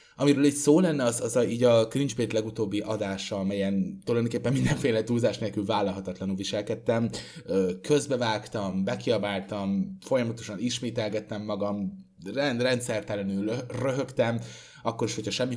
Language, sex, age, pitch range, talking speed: Hungarian, male, 20-39, 100-120 Hz, 120 wpm